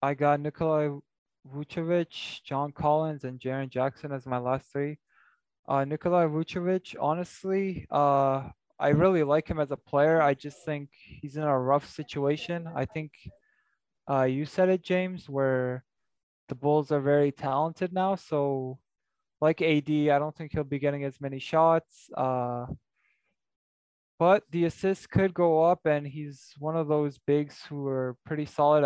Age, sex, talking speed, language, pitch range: 20-39, male, 160 wpm, English, 135-160 Hz